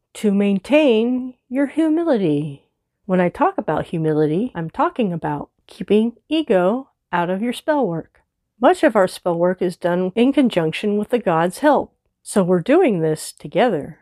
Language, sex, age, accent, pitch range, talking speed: English, female, 40-59, American, 170-265 Hz, 160 wpm